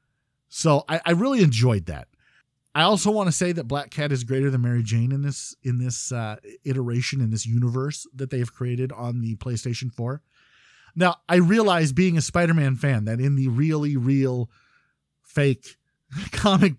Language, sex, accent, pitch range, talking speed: English, male, American, 120-155 Hz, 175 wpm